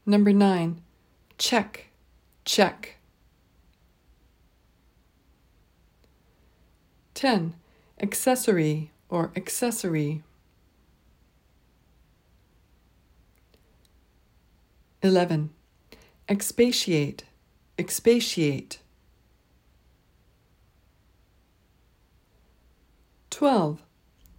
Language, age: English, 60-79